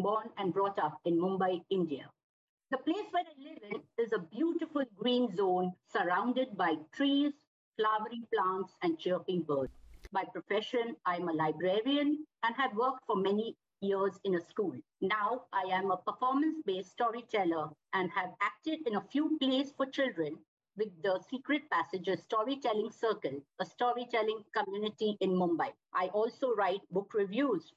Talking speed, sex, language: 155 wpm, female, English